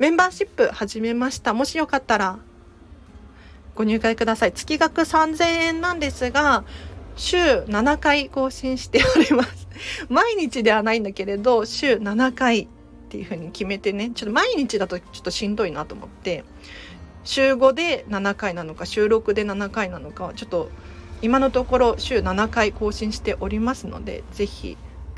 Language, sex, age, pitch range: Japanese, female, 40-59, 200-280 Hz